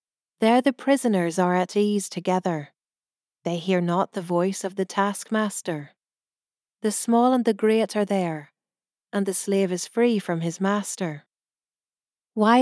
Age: 40-59